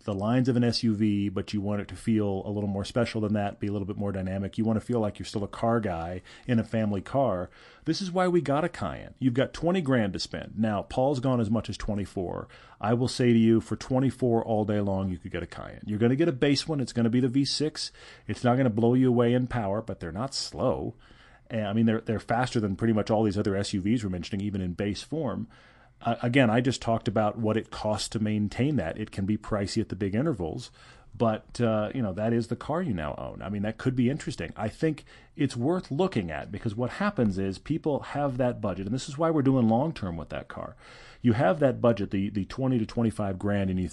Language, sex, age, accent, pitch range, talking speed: English, male, 40-59, American, 100-125 Hz, 260 wpm